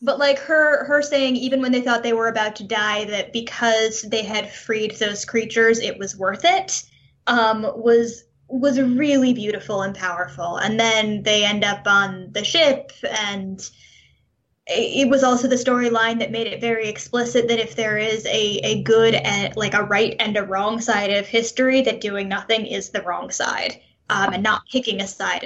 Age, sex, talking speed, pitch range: 10-29, female, 190 wpm, 205-240 Hz